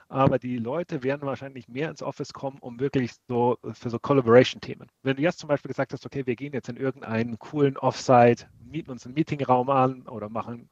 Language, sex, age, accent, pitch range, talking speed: German, male, 40-59, German, 120-145 Hz, 205 wpm